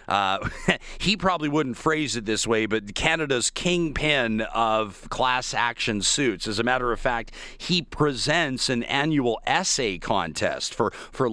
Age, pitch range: 40-59, 120-155 Hz